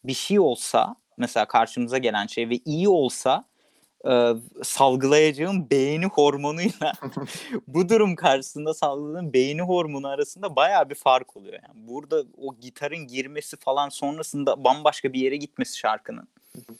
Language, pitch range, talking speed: Turkish, 135-195 Hz, 130 wpm